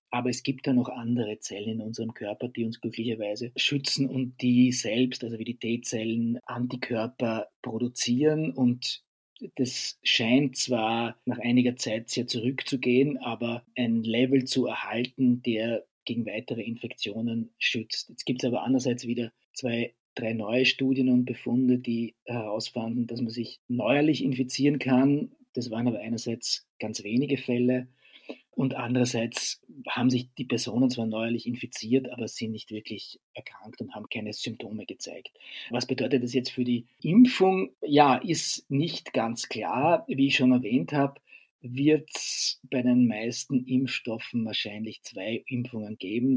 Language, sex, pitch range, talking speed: German, male, 115-130 Hz, 150 wpm